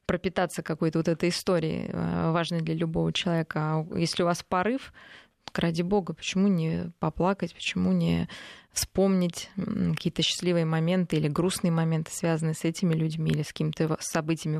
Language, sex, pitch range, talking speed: Russian, female, 160-185 Hz, 150 wpm